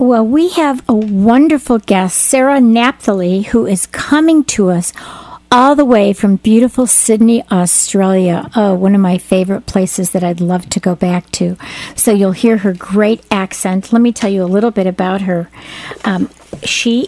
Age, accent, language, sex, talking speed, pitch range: 50-69, American, English, female, 175 wpm, 190-240 Hz